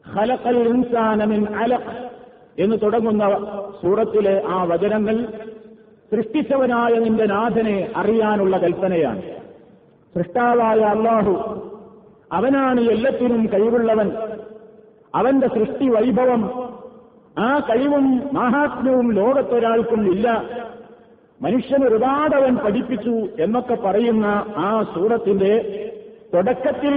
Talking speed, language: 65 wpm, Malayalam